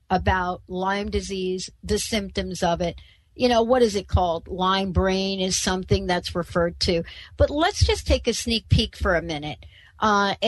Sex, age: female, 60-79